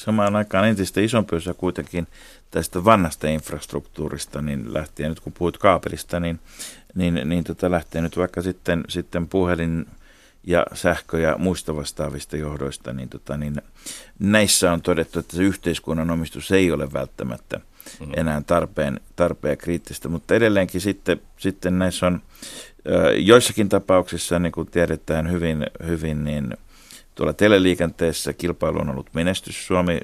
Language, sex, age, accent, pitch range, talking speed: Finnish, male, 50-69, native, 80-95 Hz, 135 wpm